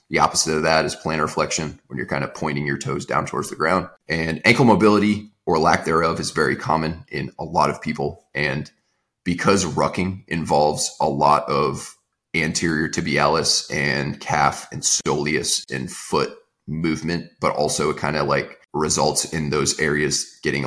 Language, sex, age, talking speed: English, male, 30-49, 170 wpm